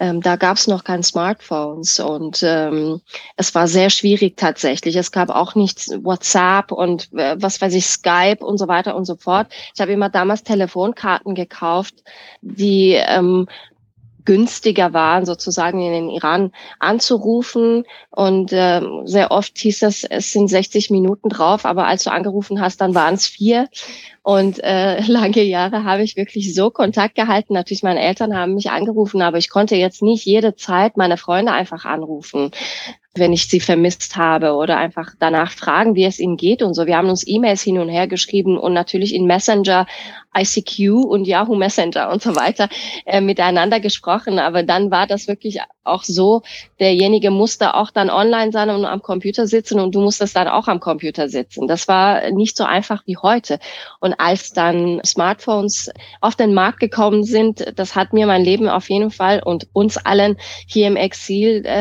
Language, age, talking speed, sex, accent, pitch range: German, 20-39, 180 wpm, female, German, 180-210 Hz